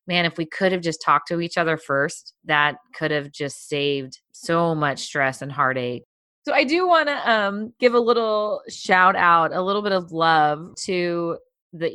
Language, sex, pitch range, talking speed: English, female, 150-180 Hz, 190 wpm